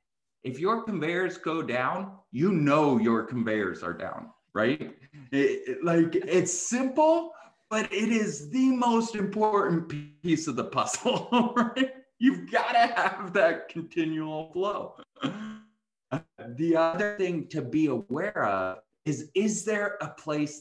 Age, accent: 30-49, American